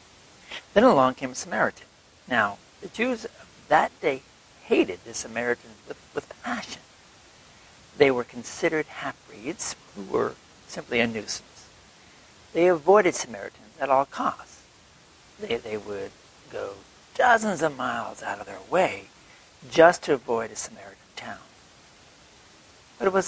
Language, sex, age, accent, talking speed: English, male, 60-79, American, 135 wpm